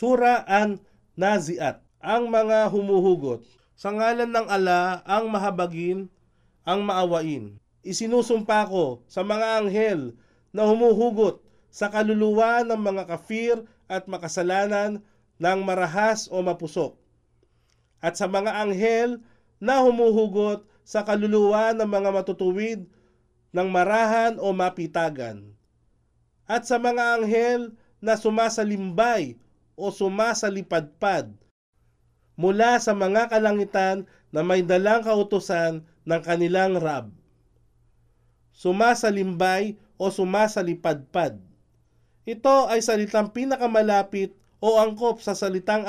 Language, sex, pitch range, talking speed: Filipino, male, 170-220 Hz, 105 wpm